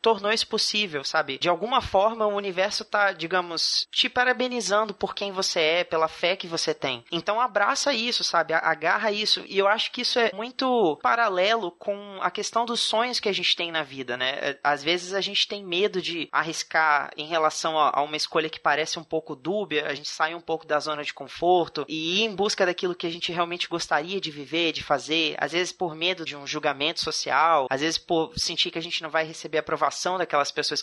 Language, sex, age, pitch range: Portuguese, male, 20-39, 155-190 Hz